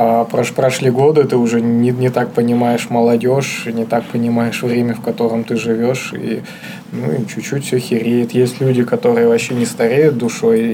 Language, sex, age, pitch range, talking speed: Russian, male, 20-39, 120-150 Hz, 160 wpm